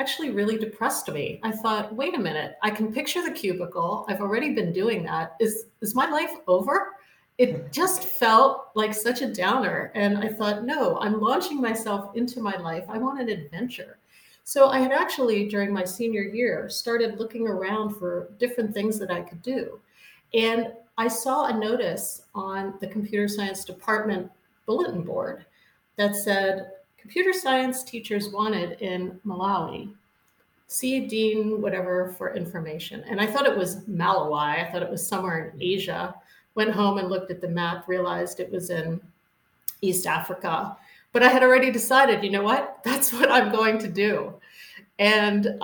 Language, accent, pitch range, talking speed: English, American, 185-235 Hz, 170 wpm